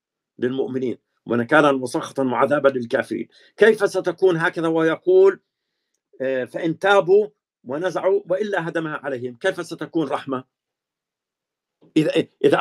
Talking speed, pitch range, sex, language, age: 100 wpm, 145-185 Hz, male, Arabic, 50-69